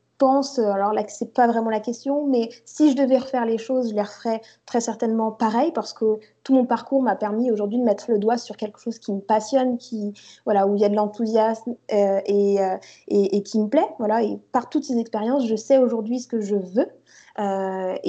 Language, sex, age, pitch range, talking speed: French, female, 20-39, 205-250 Hz, 225 wpm